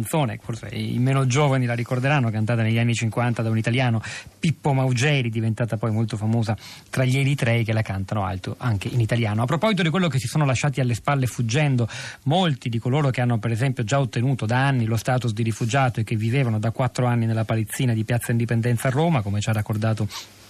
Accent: native